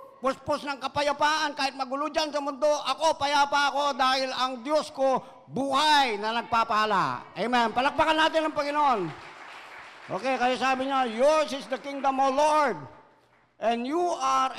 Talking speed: 150 wpm